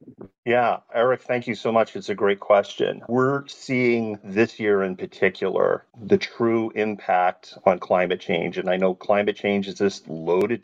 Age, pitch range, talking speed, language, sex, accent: 40-59, 95-125 Hz, 170 wpm, English, male, American